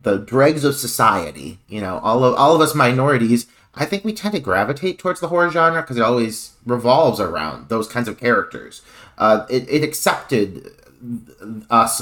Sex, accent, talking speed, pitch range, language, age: male, American, 180 wpm, 110-135 Hz, English, 30-49